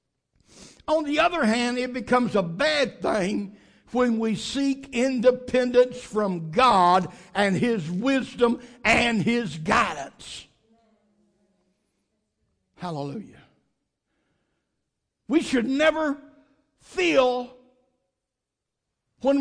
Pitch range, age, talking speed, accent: 230-295 Hz, 60-79, 85 wpm, American